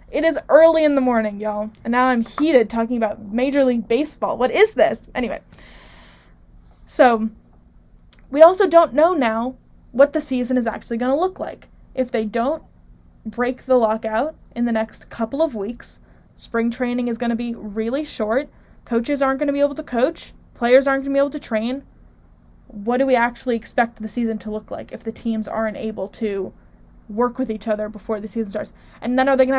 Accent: American